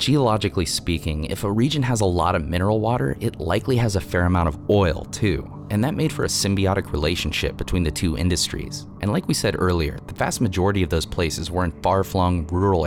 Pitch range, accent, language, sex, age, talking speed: 85-105 Hz, American, English, male, 30-49, 215 wpm